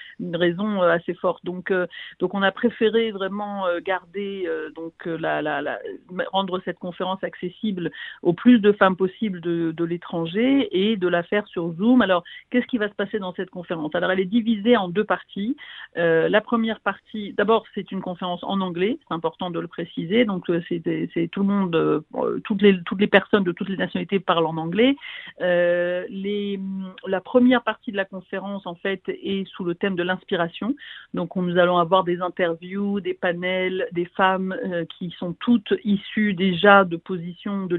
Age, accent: 50-69, French